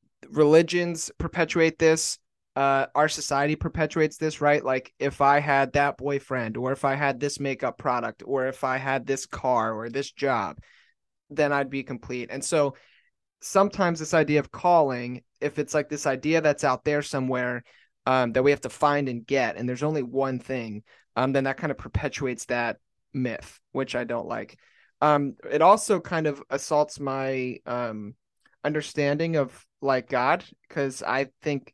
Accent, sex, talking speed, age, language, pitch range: American, male, 170 wpm, 30-49, English, 120-145 Hz